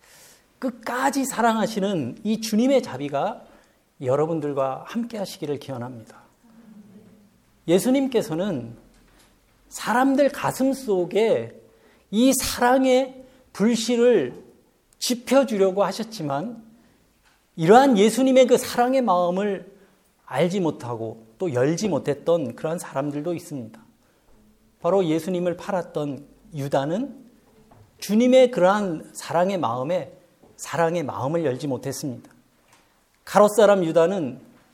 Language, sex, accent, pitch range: Korean, male, native, 170-245 Hz